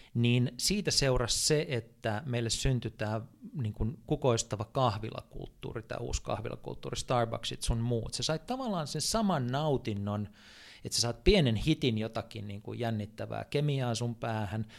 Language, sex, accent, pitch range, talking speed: Finnish, male, native, 115-140 Hz, 145 wpm